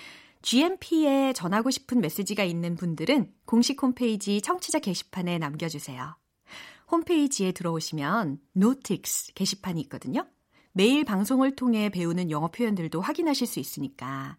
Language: Korean